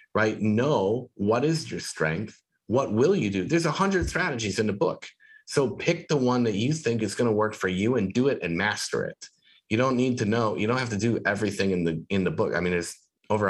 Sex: male